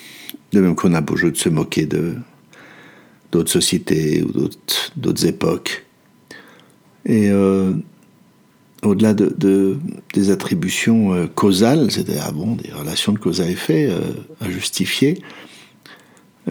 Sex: male